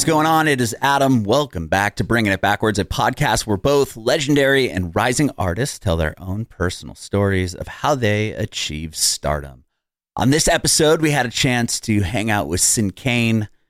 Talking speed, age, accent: 190 wpm, 30-49, American